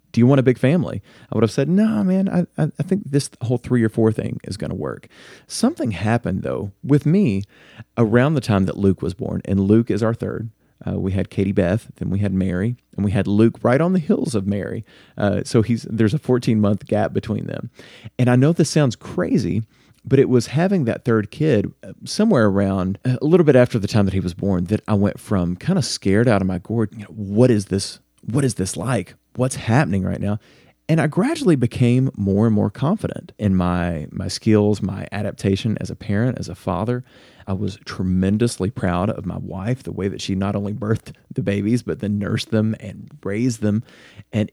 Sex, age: male, 40-59